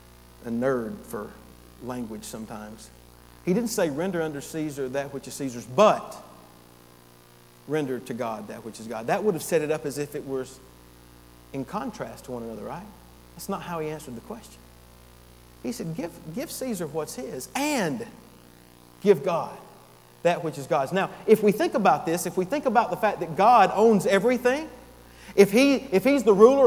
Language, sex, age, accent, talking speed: English, male, 40-59, American, 185 wpm